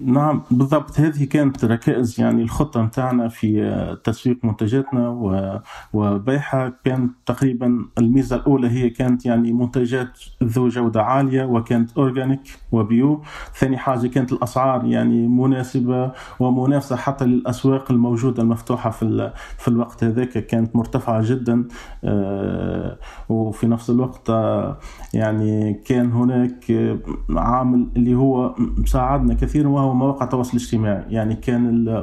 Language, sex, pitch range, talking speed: Arabic, male, 115-130 Hz, 115 wpm